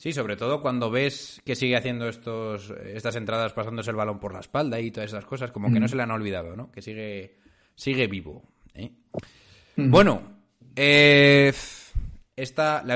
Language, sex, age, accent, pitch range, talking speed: Spanish, male, 30-49, Spanish, 110-145 Hz, 175 wpm